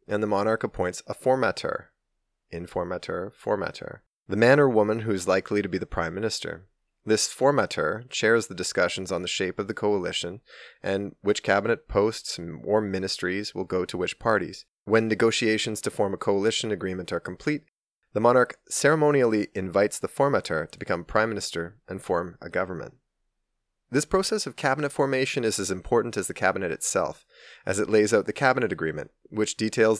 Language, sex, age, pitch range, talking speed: English, male, 20-39, 95-115 Hz, 170 wpm